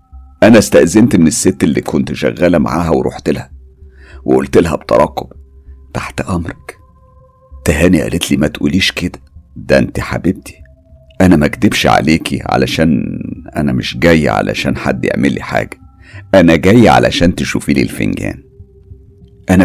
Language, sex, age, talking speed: Arabic, male, 50-69, 130 wpm